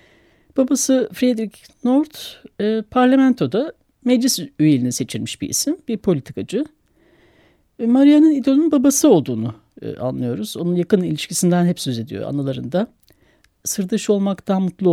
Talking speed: 115 wpm